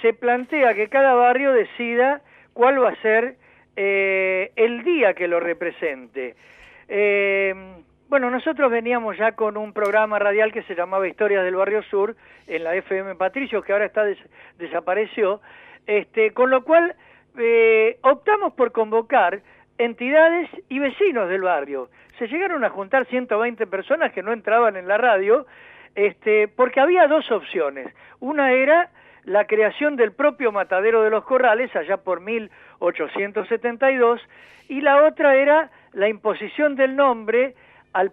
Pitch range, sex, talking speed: 205-275 Hz, male, 145 wpm